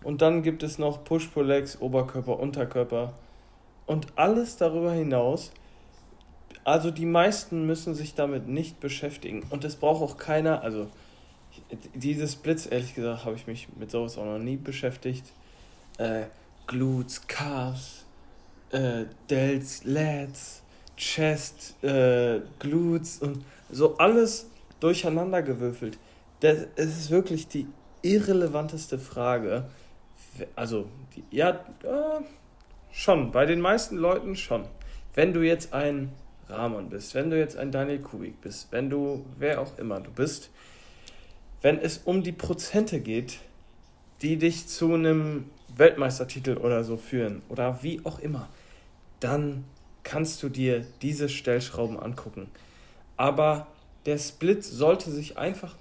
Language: German